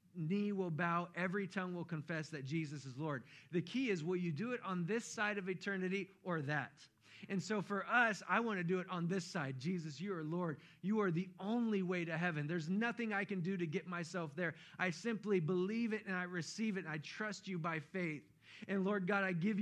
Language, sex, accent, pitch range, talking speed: English, male, American, 135-185 Hz, 230 wpm